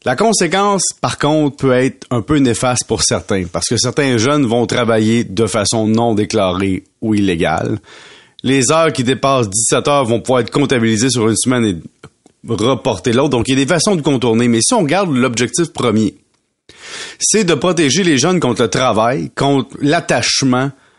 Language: French